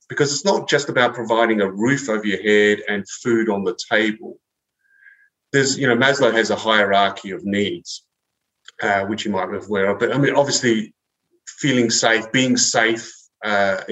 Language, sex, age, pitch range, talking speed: English, male, 30-49, 105-130 Hz, 175 wpm